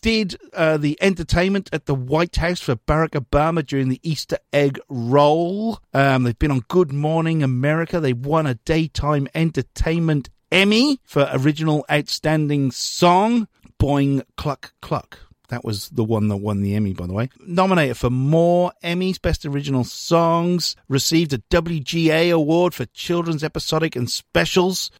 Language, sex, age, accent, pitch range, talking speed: English, male, 50-69, British, 130-170 Hz, 150 wpm